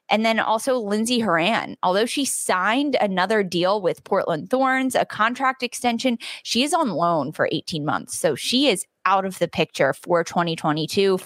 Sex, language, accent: female, English, American